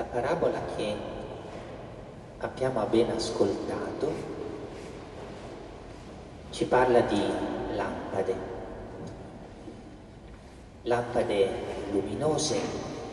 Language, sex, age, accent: Italian, male, 40-59, native